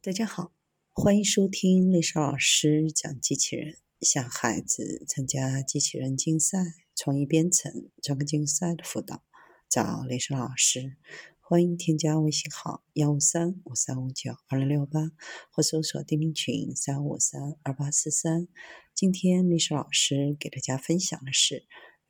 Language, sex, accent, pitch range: Chinese, female, native, 140-180 Hz